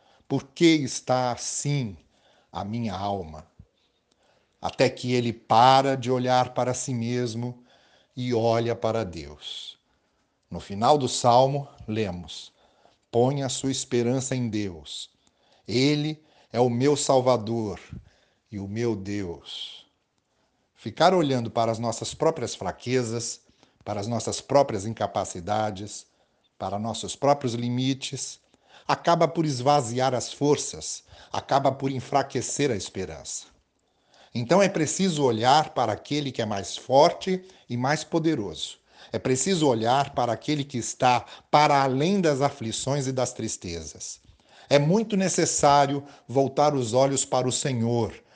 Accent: Brazilian